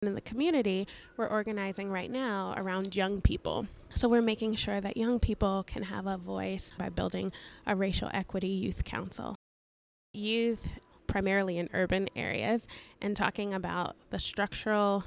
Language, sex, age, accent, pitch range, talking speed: English, female, 20-39, American, 190-220 Hz, 150 wpm